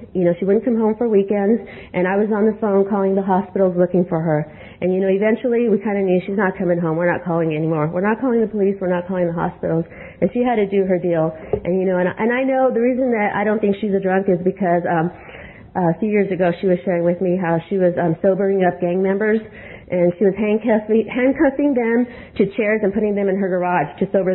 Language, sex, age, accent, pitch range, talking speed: English, female, 40-59, American, 180-220 Hz, 260 wpm